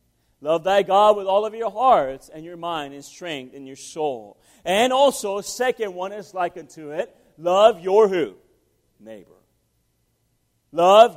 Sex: male